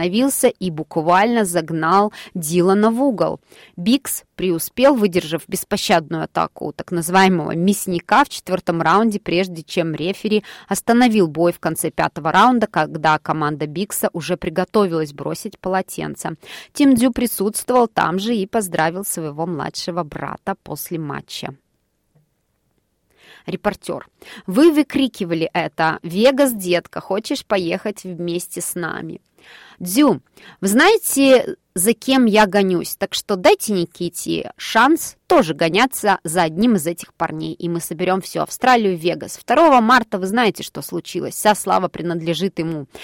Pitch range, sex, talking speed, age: 170-215 Hz, female, 130 wpm, 20-39